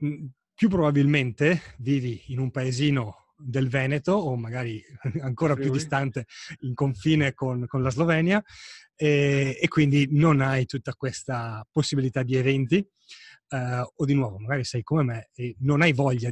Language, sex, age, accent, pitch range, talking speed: Italian, male, 30-49, native, 120-150 Hz, 150 wpm